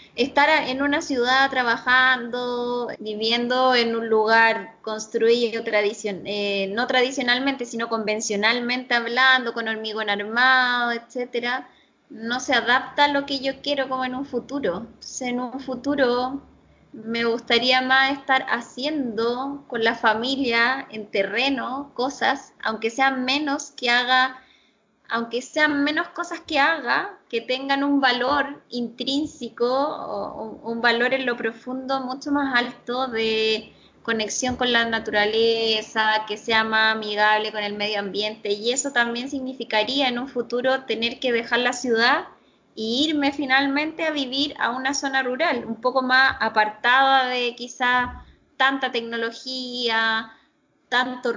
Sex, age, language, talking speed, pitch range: female, 20-39, Spanish, 135 wpm, 230-265 Hz